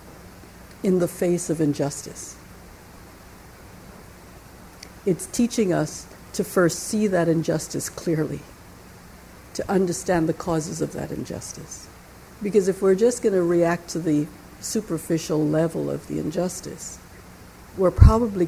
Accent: American